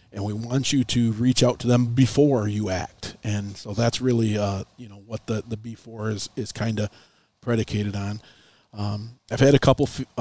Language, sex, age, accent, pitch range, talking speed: English, male, 40-59, American, 105-120 Hz, 205 wpm